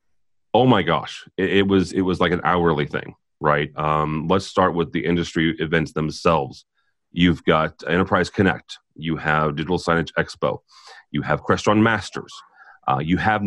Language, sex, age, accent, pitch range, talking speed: English, male, 30-49, American, 80-95 Hz, 165 wpm